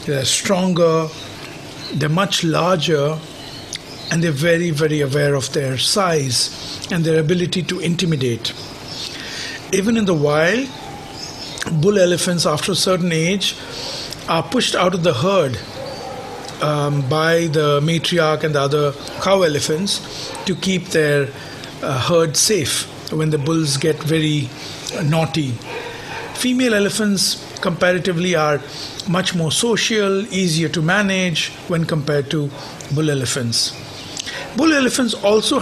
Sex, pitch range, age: male, 150-185 Hz, 50-69